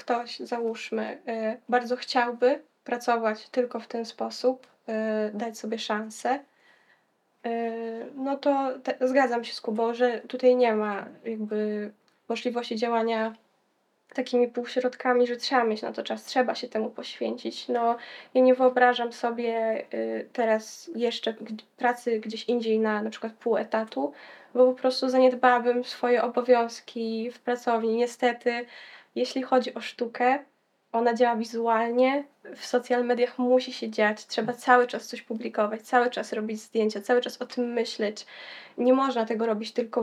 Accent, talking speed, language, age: native, 140 wpm, Polish, 20-39